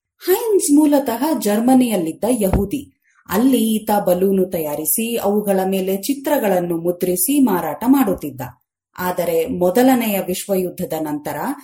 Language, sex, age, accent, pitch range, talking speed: Kannada, female, 30-49, native, 180-250 Hz, 95 wpm